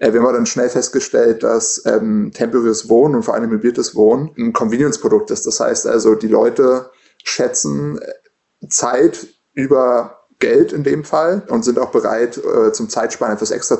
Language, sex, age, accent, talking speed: German, male, 20-39, German, 160 wpm